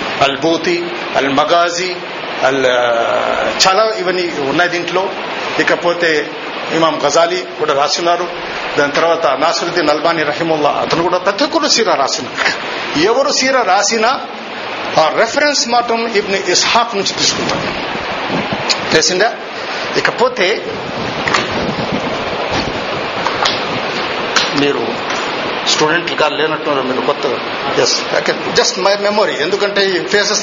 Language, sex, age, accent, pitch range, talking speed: Telugu, male, 50-69, native, 165-235 Hz, 100 wpm